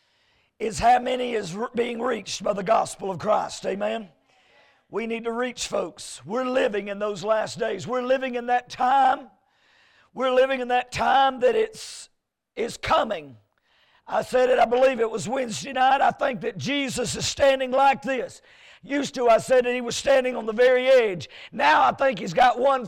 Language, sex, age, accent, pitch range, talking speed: English, male, 50-69, American, 230-275 Hz, 190 wpm